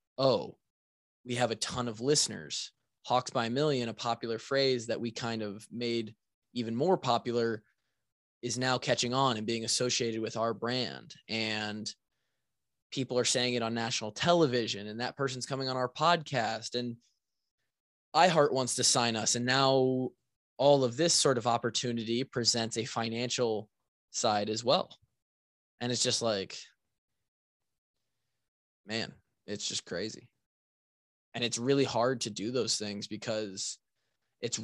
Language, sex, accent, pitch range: English, male, American, 115-135 Hz